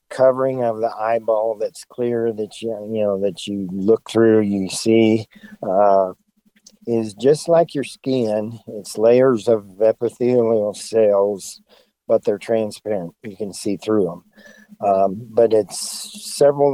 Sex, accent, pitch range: male, American, 100-120 Hz